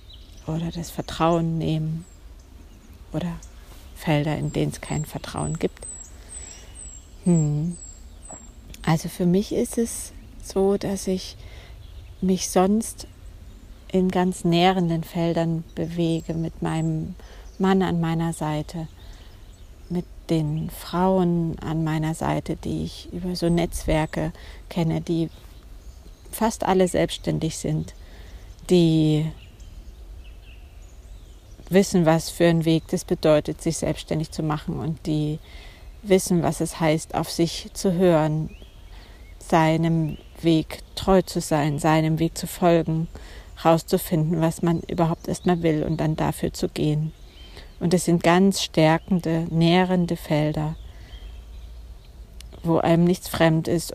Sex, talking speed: female, 115 wpm